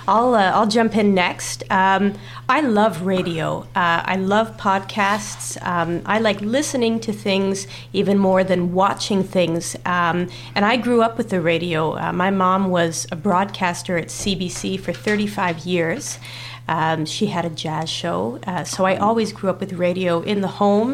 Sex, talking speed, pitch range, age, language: female, 175 wpm, 170-200 Hz, 30-49, English